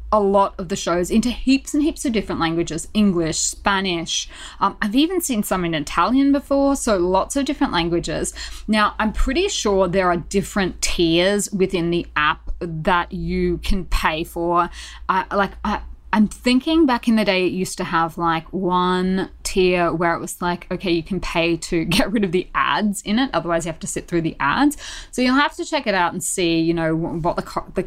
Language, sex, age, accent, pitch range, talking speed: English, female, 20-39, Australian, 175-245 Hz, 210 wpm